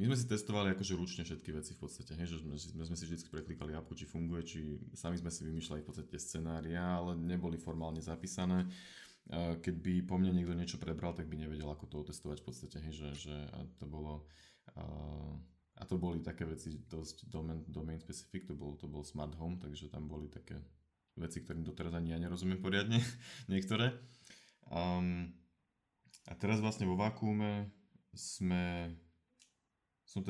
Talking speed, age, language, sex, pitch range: 160 wpm, 20-39, Slovak, male, 80-95 Hz